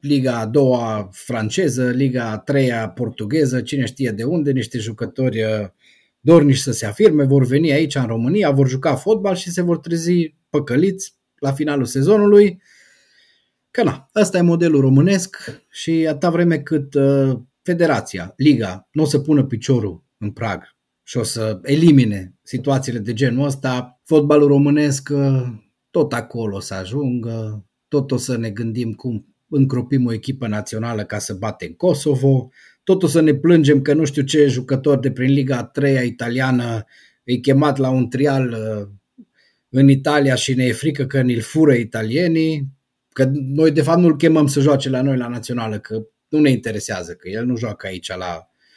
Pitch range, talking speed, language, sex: 115-150 Hz, 165 wpm, Romanian, male